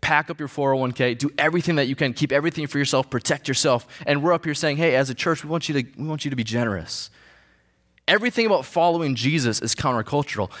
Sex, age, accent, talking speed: male, 20-39, American, 210 wpm